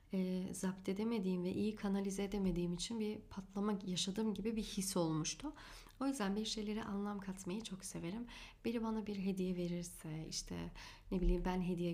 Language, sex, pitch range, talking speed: Turkish, female, 180-220 Hz, 160 wpm